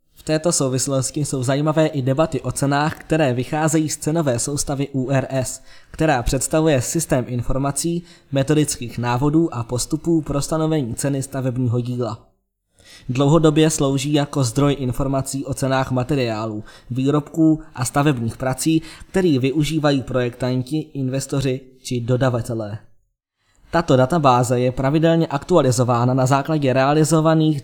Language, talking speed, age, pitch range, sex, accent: Czech, 115 wpm, 20-39, 130-155 Hz, male, native